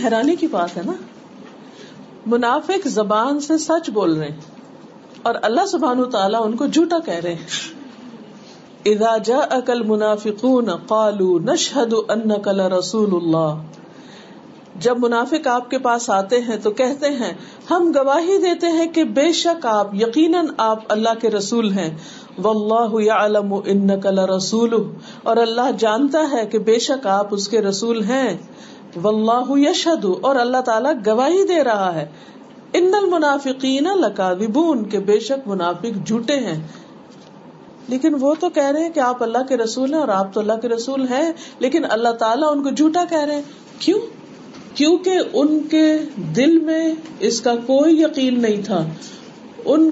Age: 50-69